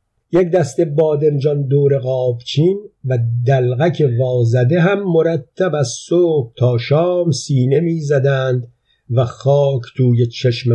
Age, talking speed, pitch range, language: 50-69, 110 wpm, 120-145 Hz, Persian